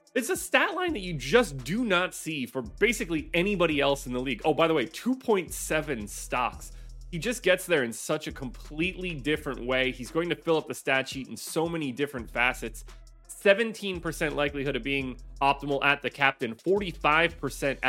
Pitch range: 140-195 Hz